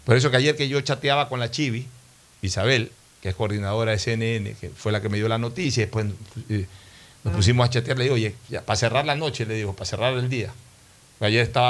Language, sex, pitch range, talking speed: Spanish, male, 110-135 Hz, 230 wpm